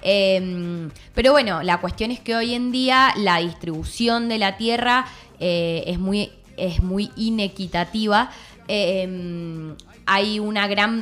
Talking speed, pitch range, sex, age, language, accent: 135 wpm, 175-235 Hz, female, 20-39, Spanish, Argentinian